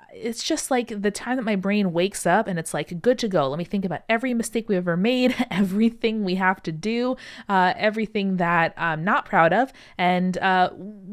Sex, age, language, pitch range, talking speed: female, 20-39, English, 165-210 Hz, 210 wpm